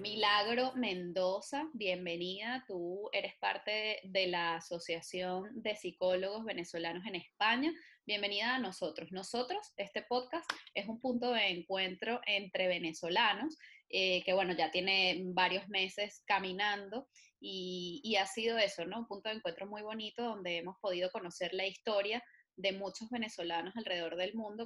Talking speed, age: 145 wpm, 20-39